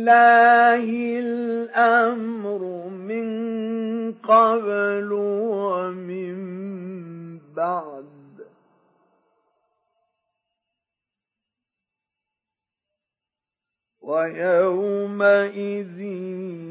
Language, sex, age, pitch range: Arabic, male, 50-69, 200-255 Hz